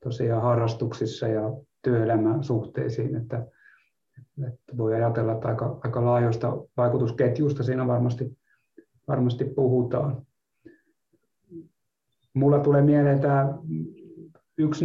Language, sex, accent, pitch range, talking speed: Finnish, male, native, 120-140 Hz, 95 wpm